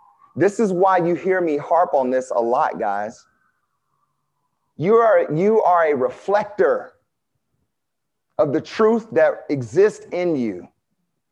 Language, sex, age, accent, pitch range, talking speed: English, male, 40-59, American, 180-250 Hz, 125 wpm